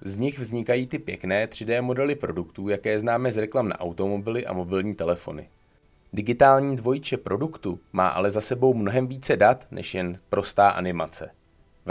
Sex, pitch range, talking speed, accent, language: male, 95-130 Hz, 160 wpm, native, Czech